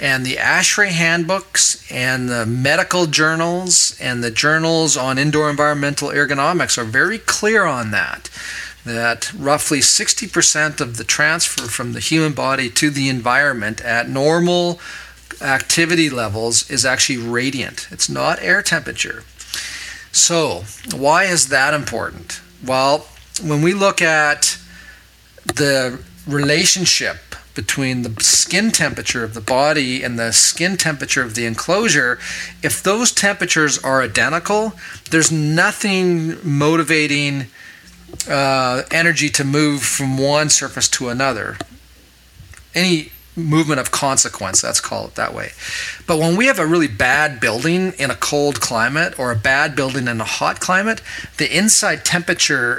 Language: English